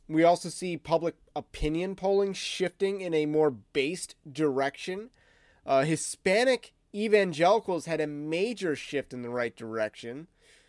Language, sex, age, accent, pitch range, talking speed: English, male, 30-49, American, 140-180 Hz, 130 wpm